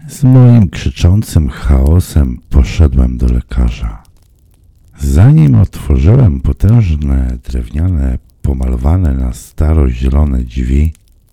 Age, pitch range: 50-69, 65-90 Hz